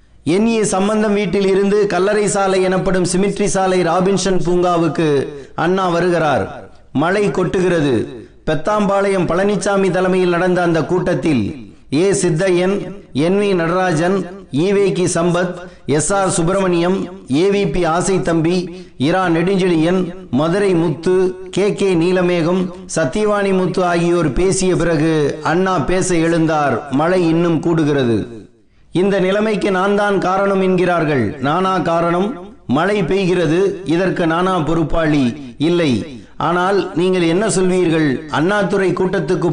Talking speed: 110 wpm